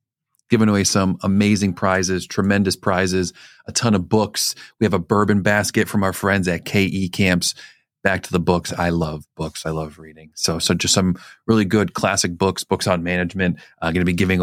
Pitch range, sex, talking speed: 90-115 Hz, male, 205 wpm